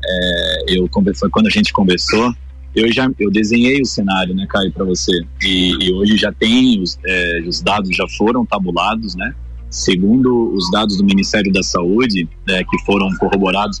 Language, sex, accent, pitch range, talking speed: Portuguese, male, Brazilian, 95-140 Hz, 175 wpm